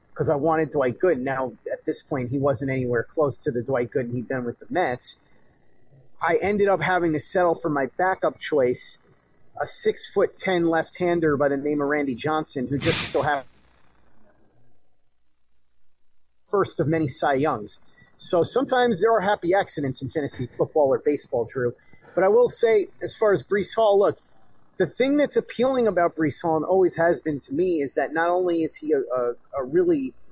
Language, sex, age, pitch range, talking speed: English, male, 30-49, 135-180 Hz, 190 wpm